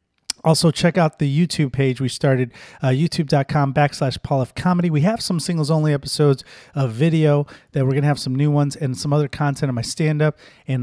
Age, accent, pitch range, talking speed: 30-49, American, 115-145 Hz, 205 wpm